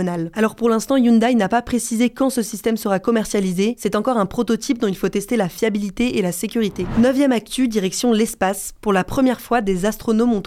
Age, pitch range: 20-39, 195-235 Hz